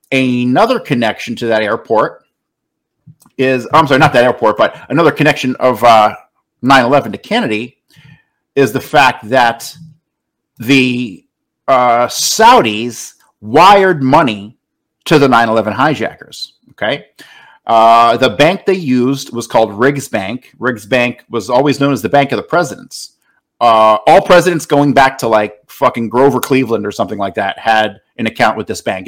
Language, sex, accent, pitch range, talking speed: English, male, American, 115-145 Hz, 150 wpm